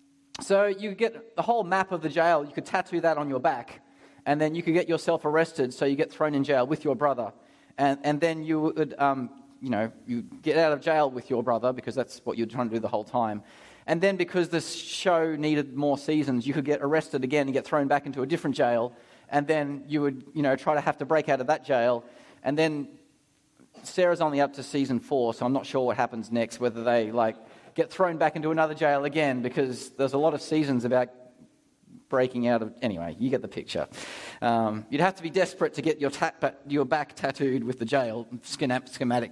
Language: English